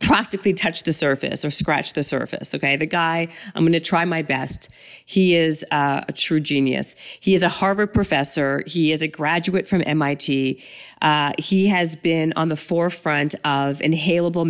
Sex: female